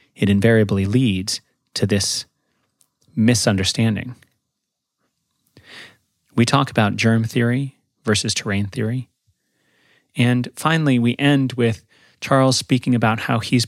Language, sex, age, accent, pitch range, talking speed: English, male, 30-49, American, 105-125 Hz, 105 wpm